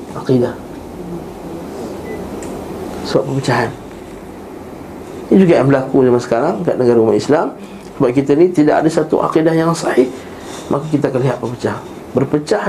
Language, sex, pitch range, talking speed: Malay, male, 125-160 Hz, 125 wpm